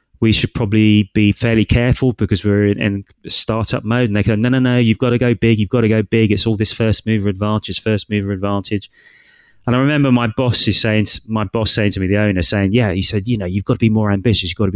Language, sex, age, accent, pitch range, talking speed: English, male, 30-49, British, 95-115 Hz, 270 wpm